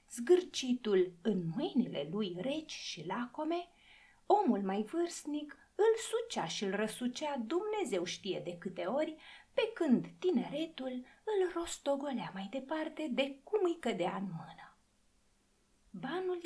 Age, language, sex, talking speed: 30-49, Romanian, female, 120 wpm